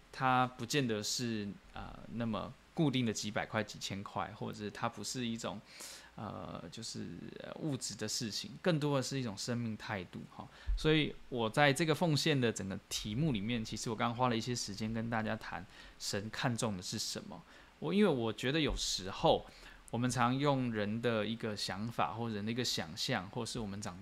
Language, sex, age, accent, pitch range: Chinese, male, 20-39, native, 105-130 Hz